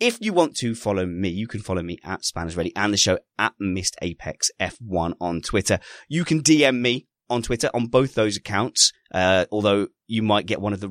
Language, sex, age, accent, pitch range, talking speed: English, male, 30-49, British, 90-115 Hz, 210 wpm